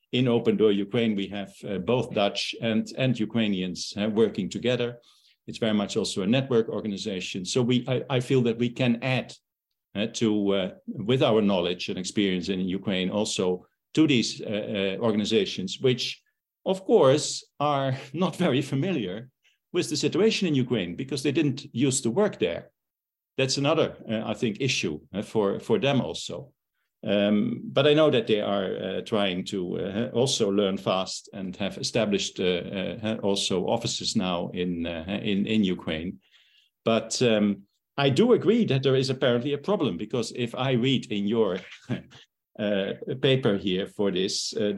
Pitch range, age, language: 100-130 Hz, 50-69, English